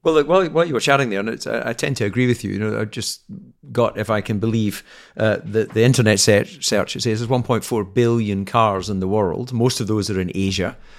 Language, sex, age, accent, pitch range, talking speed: English, male, 40-59, British, 100-115 Hz, 245 wpm